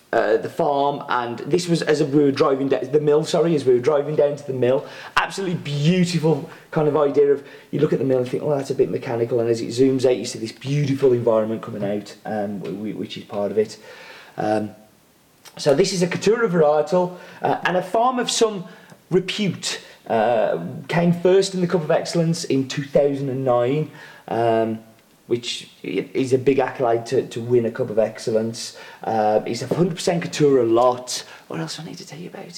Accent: British